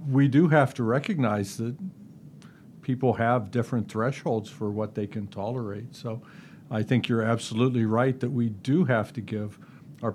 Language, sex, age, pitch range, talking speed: English, male, 50-69, 110-140 Hz, 165 wpm